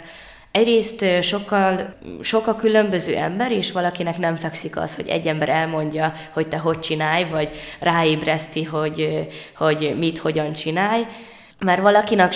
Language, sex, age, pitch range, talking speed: Hungarian, female, 20-39, 160-180 Hz, 125 wpm